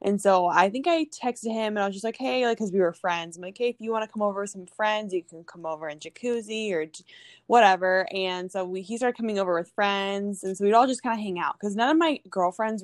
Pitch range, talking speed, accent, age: 175-225 Hz, 290 wpm, American, 10-29